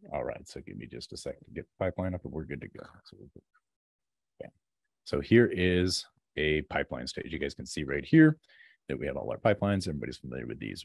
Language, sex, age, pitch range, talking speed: English, male, 30-49, 75-100 Hz, 220 wpm